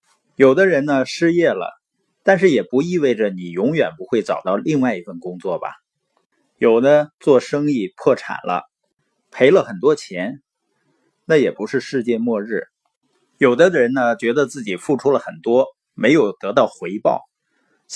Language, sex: Chinese, male